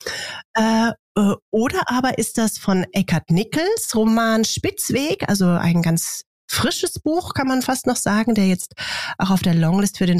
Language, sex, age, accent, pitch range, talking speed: German, female, 30-49, German, 175-225 Hz, 165 wpm